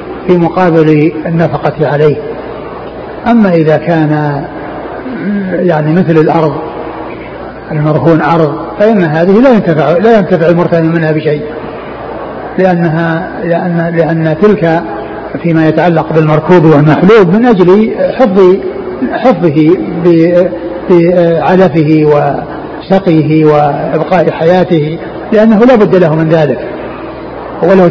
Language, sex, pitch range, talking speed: Arabic, male, 160-195 Hz, 95 wpm